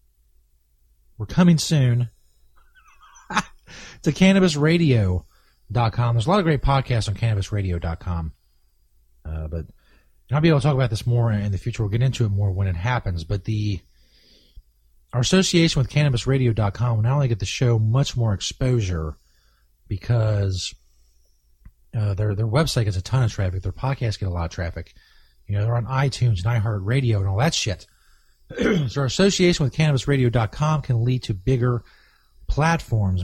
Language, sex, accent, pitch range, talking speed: English, male, American, 95-140 Hz, 160 wpm